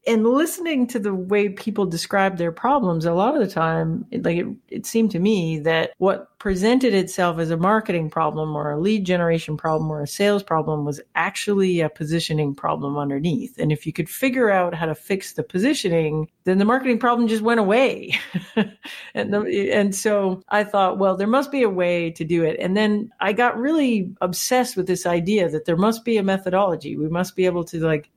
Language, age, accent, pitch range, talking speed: English, 50-69, American, 165-230 Hz, 205 wpm